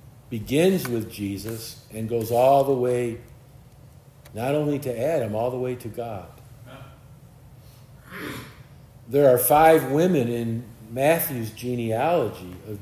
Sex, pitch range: male, 115-135 Hz